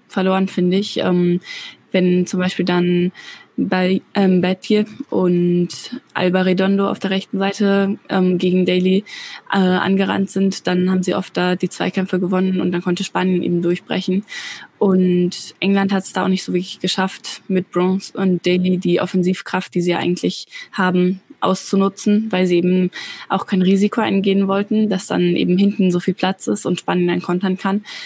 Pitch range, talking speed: 180-195 Hz, 165 wpm